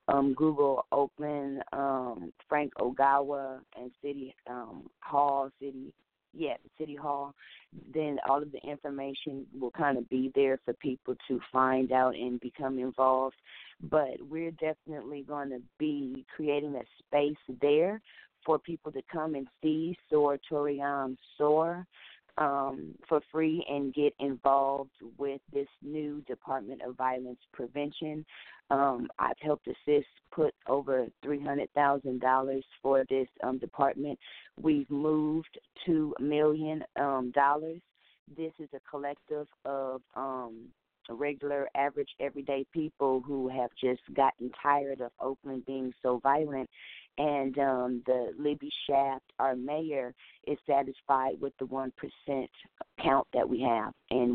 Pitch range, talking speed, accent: 130-145 Hz, 130 wpm, American